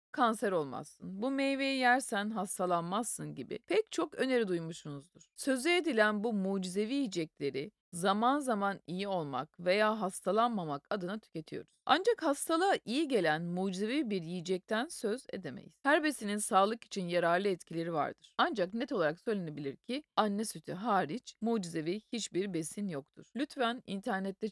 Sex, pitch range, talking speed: female, 180-240 Hz, 130 wpm